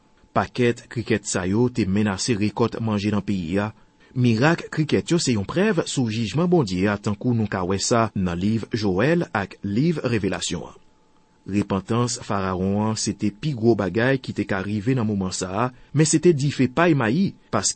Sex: male